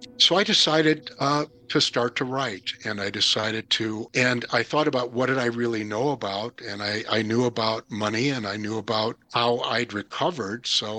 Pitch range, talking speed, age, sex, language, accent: 110-140 Hz, 195 wpm, 60-79, male, English, American